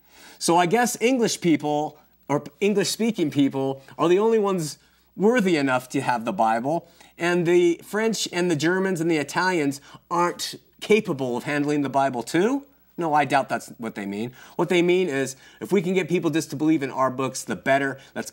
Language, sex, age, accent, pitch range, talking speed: English, male, 30-49, American, 120-165 Hz, 195 wpm